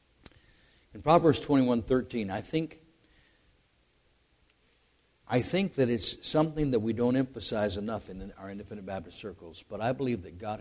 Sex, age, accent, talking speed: male, 60-79, American, 140 wpm